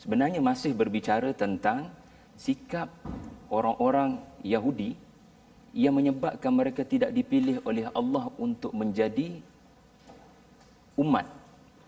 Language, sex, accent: Malayalam, male, Indonesian